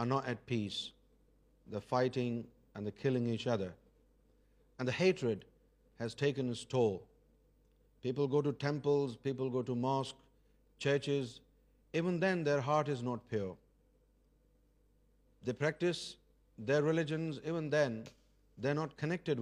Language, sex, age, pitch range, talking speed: Urdu, male, 50-69, 120-150 Hz, 135 wpm